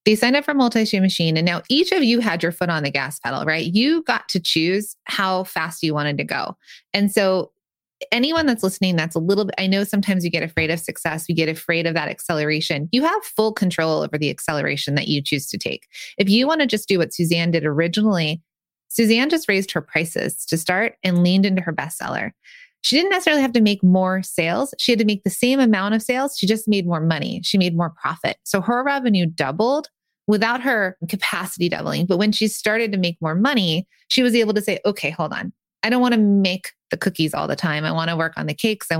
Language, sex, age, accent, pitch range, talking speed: English, female, 20-39, American, 165-225 Hz, 240 wpm